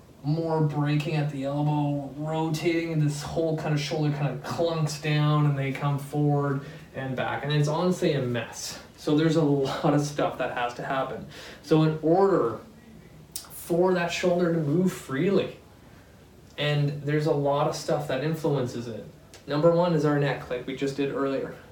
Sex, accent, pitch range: male, American, 135-160 Hz